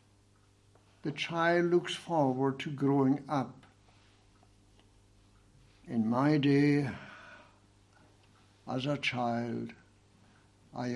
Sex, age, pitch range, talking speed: male, 60-79, 100-135 Hz, 75 wpm